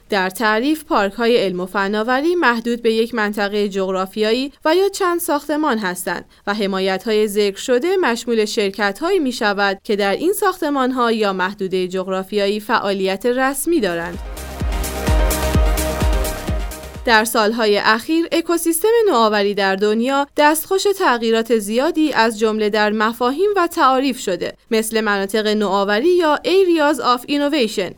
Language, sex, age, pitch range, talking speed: English, female, 20-39, 200-265 Hz, 130 wpm